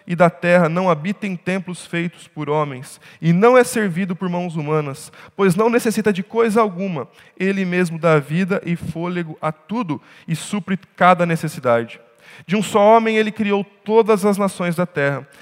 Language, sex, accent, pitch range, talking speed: Portuguese, male, Brazilian, 155-195 Hz, 175 wpm